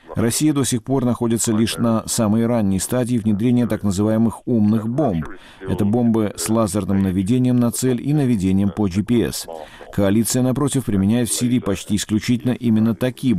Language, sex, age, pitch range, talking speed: Russian, male, 50-69, 100-125 Hz, 155 wpm